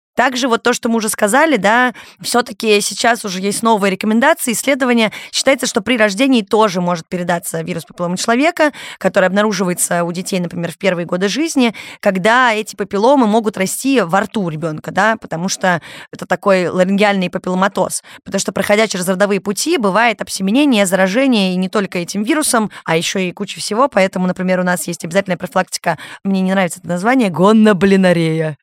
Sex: female